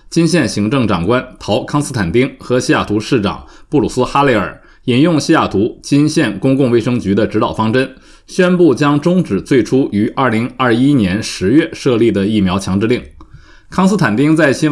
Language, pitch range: Chinese, 110-145 Hz